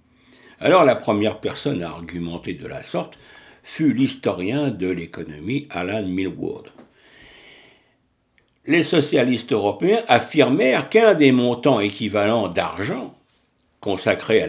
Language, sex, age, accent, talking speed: French, male, 60-79, French, 110 wpm